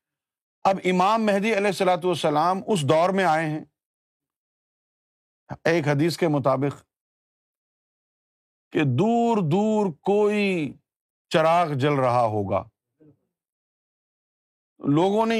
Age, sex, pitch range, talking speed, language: 50-69, male, 145-195 Hz, 95 wpm, Urdu